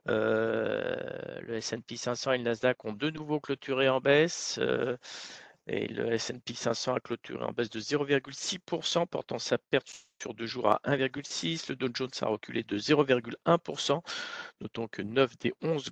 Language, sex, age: French, male, 50-69